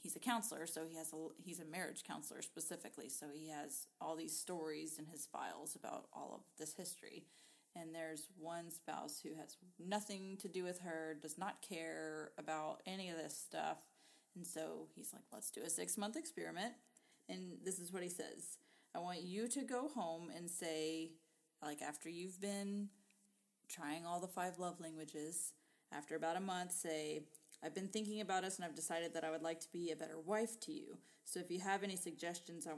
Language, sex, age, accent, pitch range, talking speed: English, female, 30-49, American, 160-195 Hz, 200 wpm